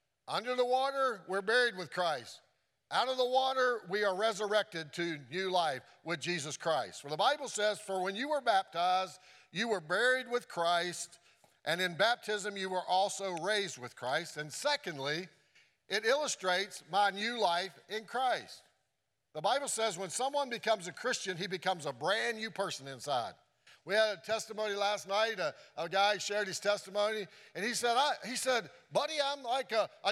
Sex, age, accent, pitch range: male, 50-69, American, 180-250 Hz